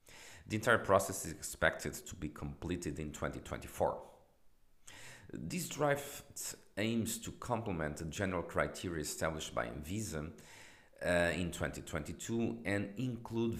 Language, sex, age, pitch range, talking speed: English, male, 50-69, 75-95 Hz, 115 wpm